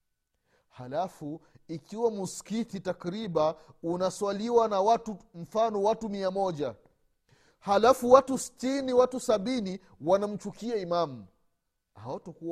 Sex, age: male, 40-59